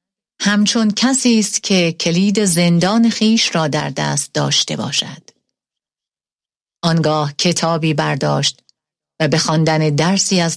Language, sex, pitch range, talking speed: Persian, female, 155-200 Hz, 115 wpm